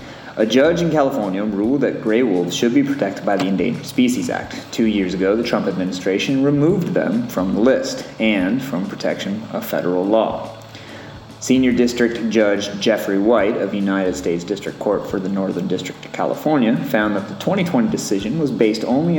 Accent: American